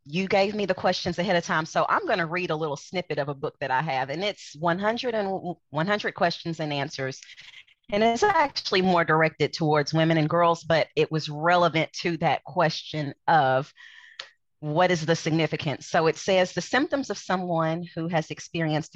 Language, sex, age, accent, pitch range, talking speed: English, female, 30-49, American, 145-180 Hz, 190 wpm